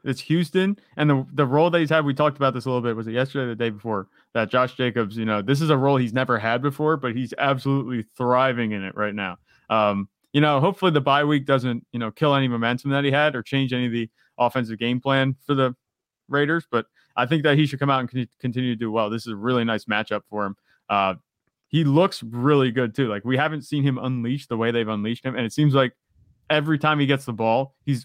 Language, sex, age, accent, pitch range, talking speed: English, male, 20-39, American, 115-140 Hz, 255 wpm